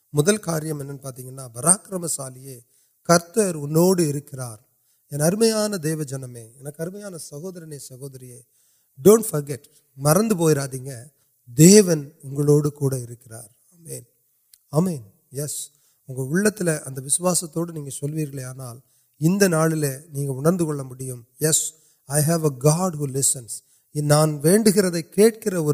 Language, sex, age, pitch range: Urdu, male, 30-49, 140-170 Hz